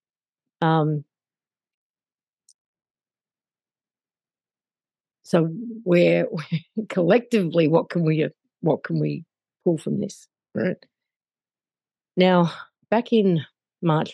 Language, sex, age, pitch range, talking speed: English, female, 50-69, 155-195 Hz, 75 wpm